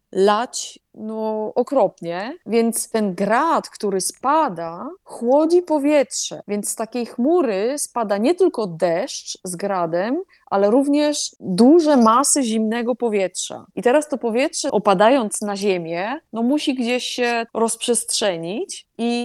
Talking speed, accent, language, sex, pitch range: 120 wpm, native, Polish, female, 200-265 Hz